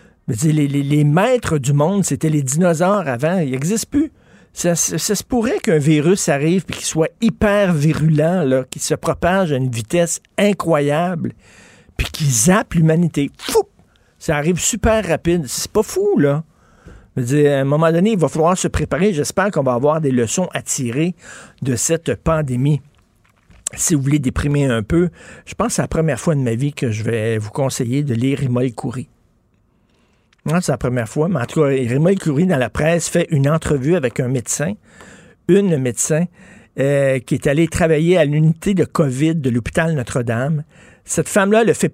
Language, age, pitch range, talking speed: French, 50-69, 135-175 Hz, 195 wpm